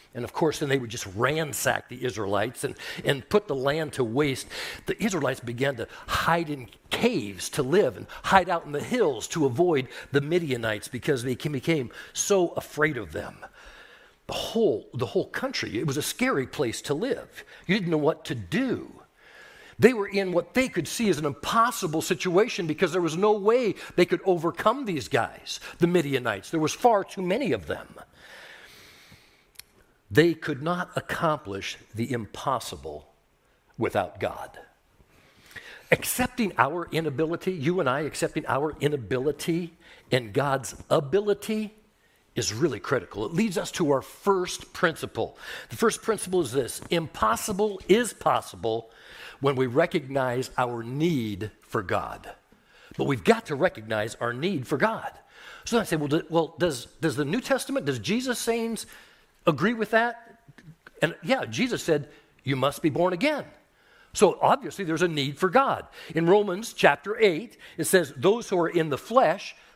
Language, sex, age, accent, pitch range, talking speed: English, male, 60-79, American, 140-200 Hz, 165 wpm